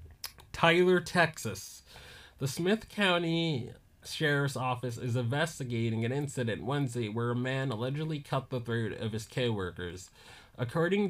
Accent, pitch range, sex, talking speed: American, 115-145 Hz, male, 125 wpm